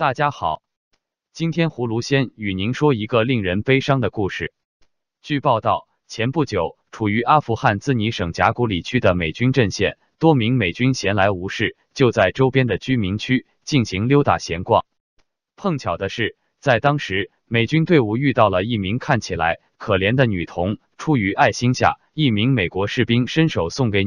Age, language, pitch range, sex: 20-39, Chinese, 100-130 Hz, male